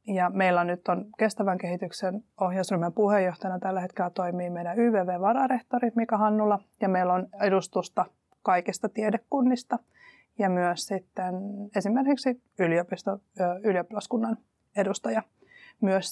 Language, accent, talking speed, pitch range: Finnish, native, 105 wpm, 180-215 Hz